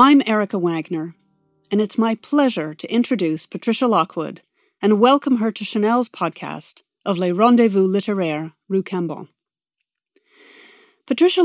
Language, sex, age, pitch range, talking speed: English, female, 40-59, 190-245 Hz, 125 wpm